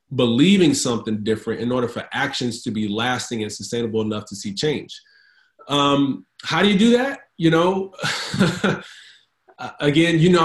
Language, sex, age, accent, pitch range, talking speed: English, male, 30-49, American, 115-145 Hz, 155 wpm